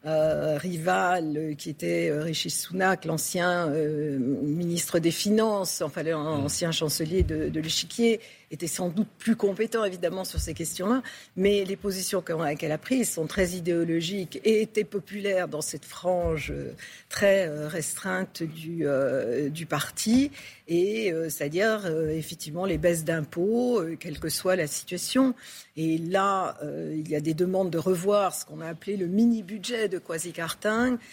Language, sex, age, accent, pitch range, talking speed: French, female, 50-69, French, 160-200 Hz, 160 wpm